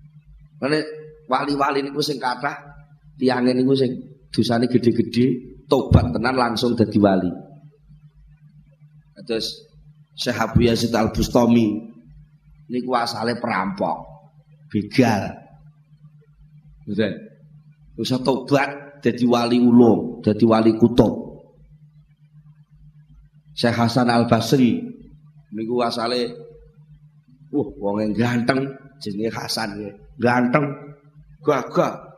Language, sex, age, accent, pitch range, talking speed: Indonesian, male, 30-49, native, 120-150 Hz, 90 wpm